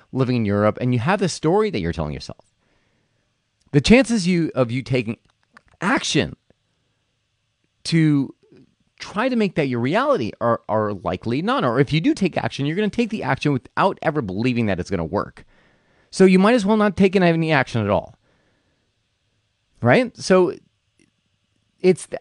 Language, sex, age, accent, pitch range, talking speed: English, male, 30-49, American, 110-170 Hz, 175 wpm